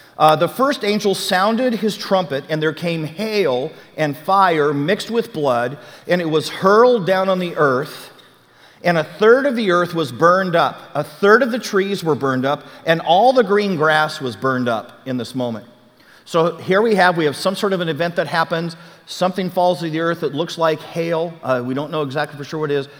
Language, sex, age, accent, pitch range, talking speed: English, male, 50-69, American, 150-190 Hz, 220 wpm